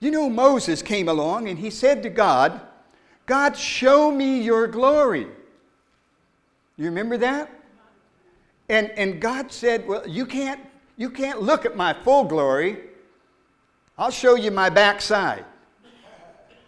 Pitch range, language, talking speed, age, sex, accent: 210-275 Hz, English, 130 wpm, 60-79, male, American